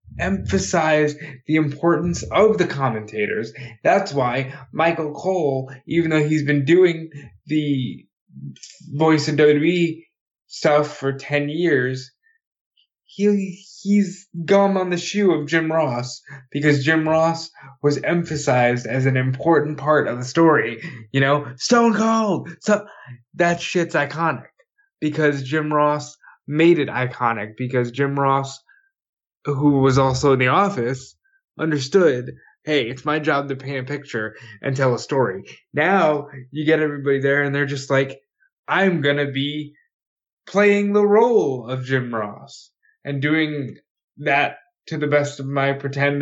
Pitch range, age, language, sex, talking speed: 135-170 Hz, 20-39, English, male, 140 wpm